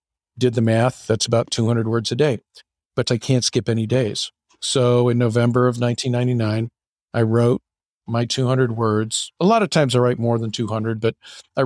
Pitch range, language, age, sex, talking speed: 110-130 Hz, English, 50-69, male, 185 wpm